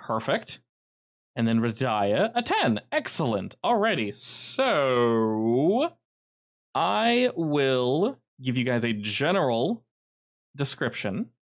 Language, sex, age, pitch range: English, male, 20-39, 100-130 Hz